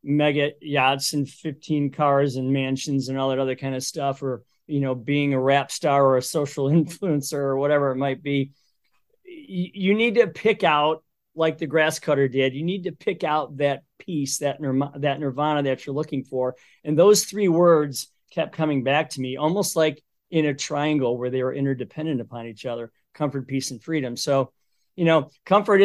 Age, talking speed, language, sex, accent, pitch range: 40-59, 195 wpm, English, male, American, 135-165 Hz